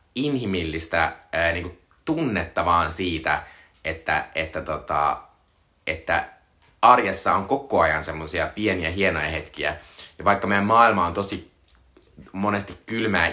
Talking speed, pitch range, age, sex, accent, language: 110 wpm, 85-105 Hz, 20-39, male, native, Finnish